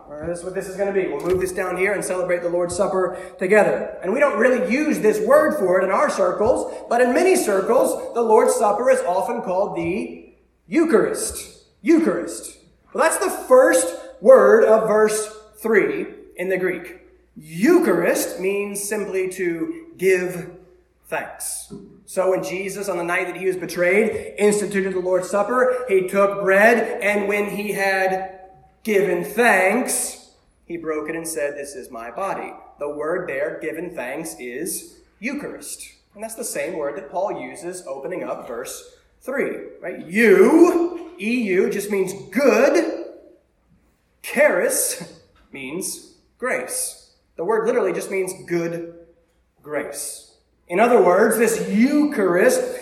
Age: 30-49